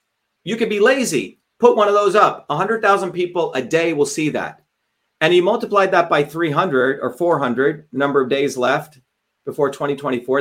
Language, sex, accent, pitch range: English, male, American, 145-185 Hz